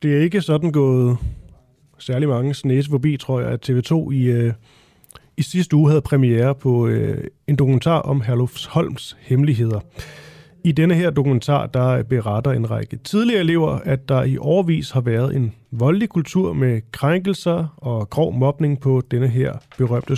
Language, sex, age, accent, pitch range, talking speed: Danish, male, 30-49, native, 125-155 Hz, 160 wpm